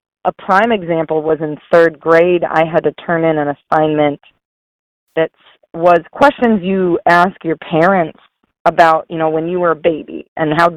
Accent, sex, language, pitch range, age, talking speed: American, female, English, 160-205 Hz, 40-59, 175 wpm